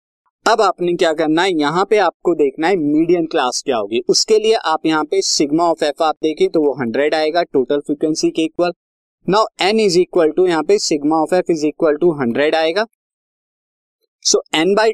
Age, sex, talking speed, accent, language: 20-39, male, 205 wpm, native, Hindi